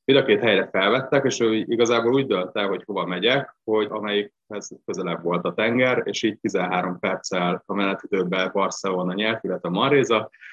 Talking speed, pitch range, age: 175 wpm, 95-110 Hz, 20-39